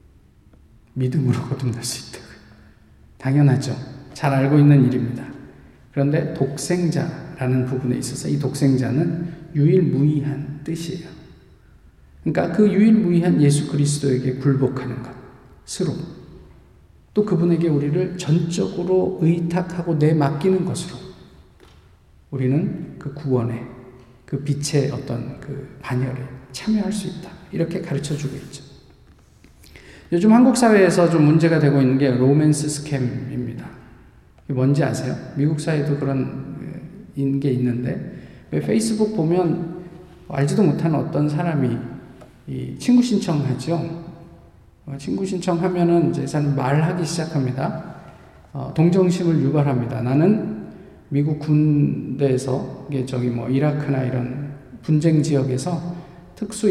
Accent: native